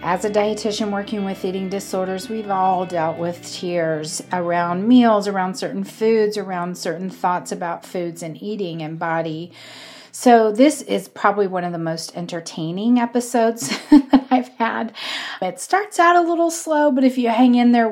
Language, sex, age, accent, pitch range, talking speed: English, female, 40-59, American, 175-235 Hz, 170 wpm